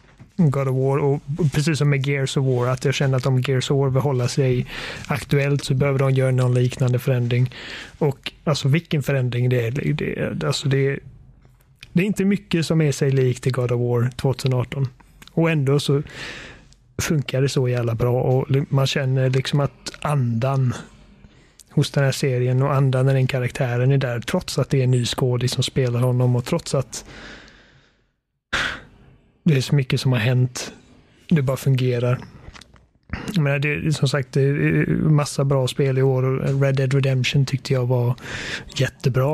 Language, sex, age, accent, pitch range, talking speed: Swedish, male, 30-49, native, 130-145 Hz, 180 wpm